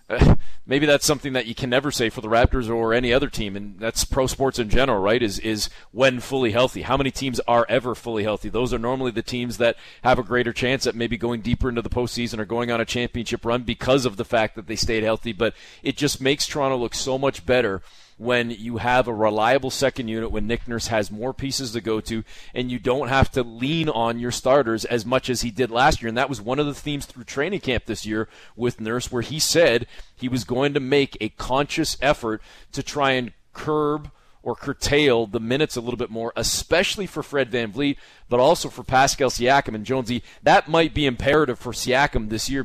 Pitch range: 115-140 Hz